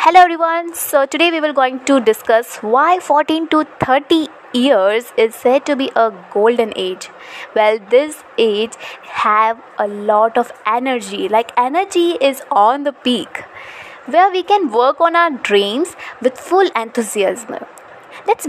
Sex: female